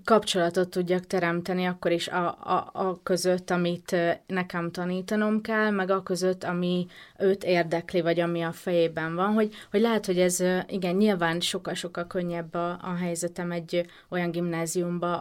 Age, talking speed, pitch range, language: 30-49, 150 wpm, 170-195 Hz, Hungarian